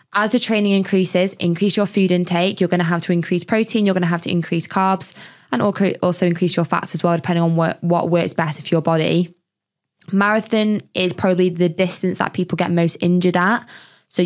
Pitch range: 170-205 Hz